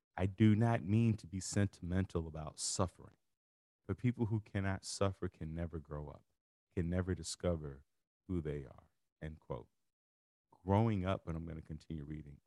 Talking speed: 165 wpm